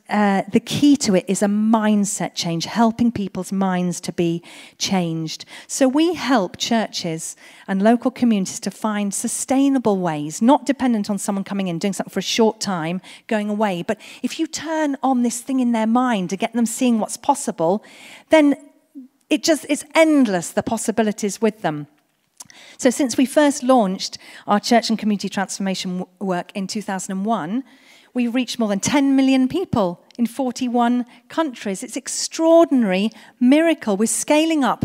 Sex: female